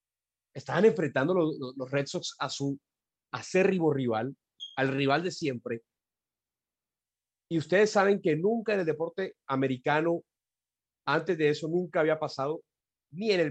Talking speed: 145 wpm